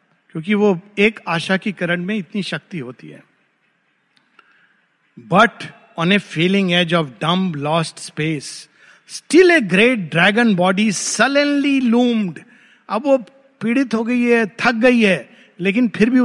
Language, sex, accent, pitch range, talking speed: Hindi, male, native, 170-230 Hz, 130 wpm